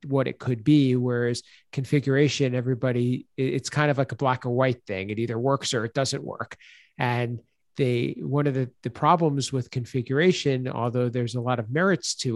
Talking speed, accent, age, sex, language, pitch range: 190 wpm, American, 40-59, male, English, 120-140 Hz